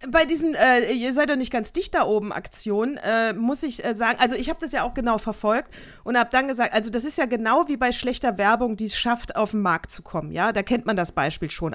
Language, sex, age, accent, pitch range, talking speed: German, female, 40-59, German, 200-250 Hz, 270 wpm